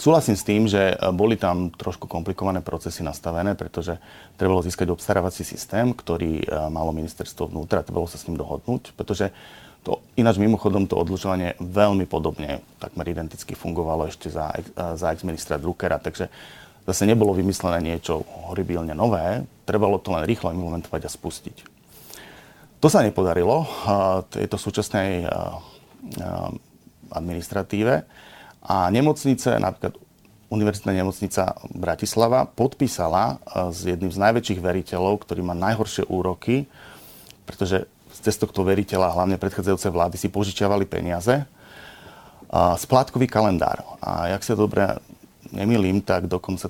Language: Slovak